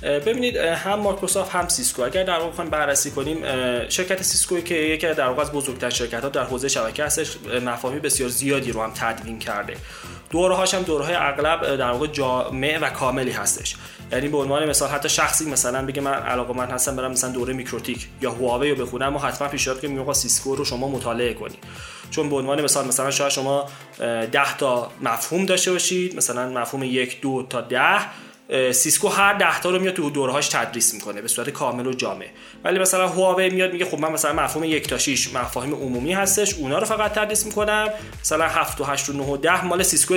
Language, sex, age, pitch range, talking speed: Persian, male, 20-39, 125-170 Hz, 190 wpm